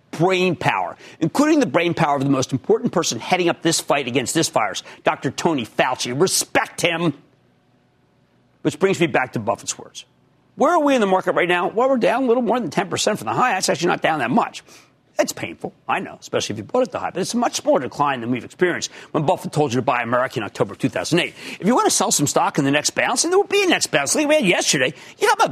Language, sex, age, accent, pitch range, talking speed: English, male, 50-69, American, 145-220 Hz, 265 wpm